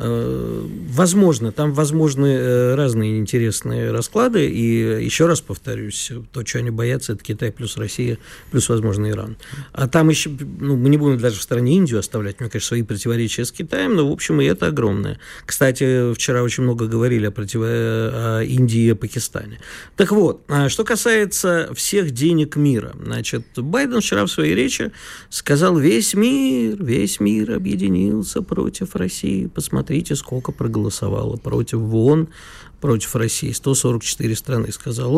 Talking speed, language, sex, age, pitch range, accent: 150 wpm, Russian, male, 50-69, 115-145 Hz, native